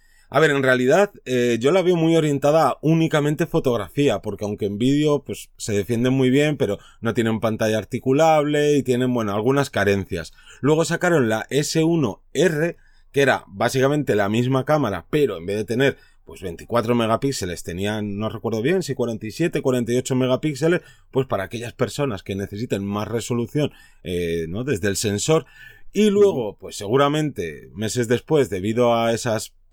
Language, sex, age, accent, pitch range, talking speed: Spanish, male, 30-49, Spanish, 110-140 Hz, 165 wpm